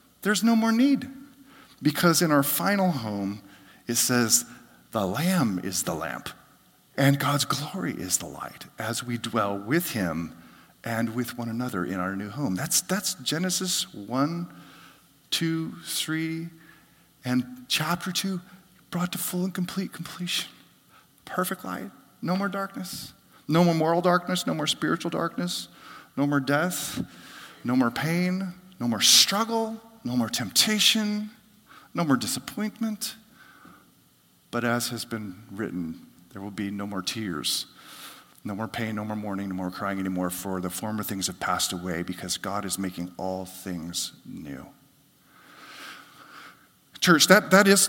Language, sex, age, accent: Japanese, male, 40-59, American